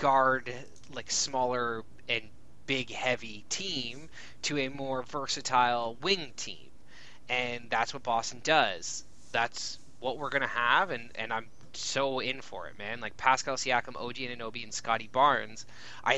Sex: male